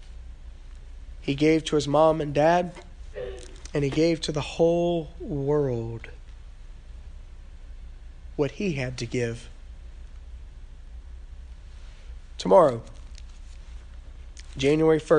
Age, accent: 30-49, American